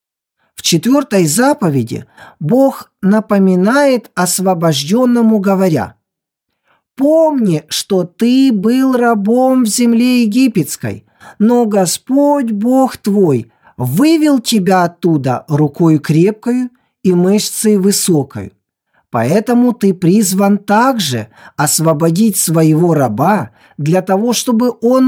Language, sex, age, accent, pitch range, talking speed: Ukrainian, male, 50-69, native, 155-240 Hz, 90 wpm